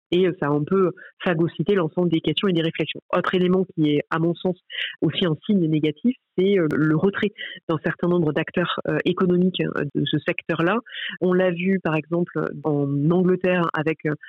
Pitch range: 160-185 Hz